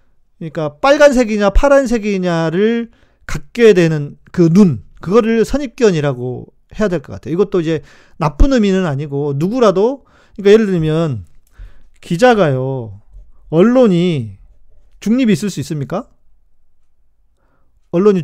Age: 40-59